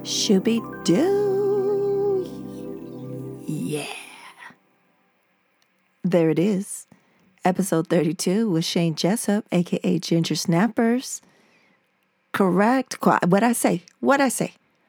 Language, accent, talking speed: English, American, 90 wpm